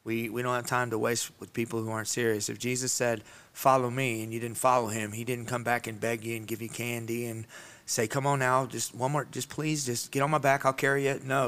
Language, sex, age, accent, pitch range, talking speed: English, male, 30-49, American, 115-130 Hz, 270 wpm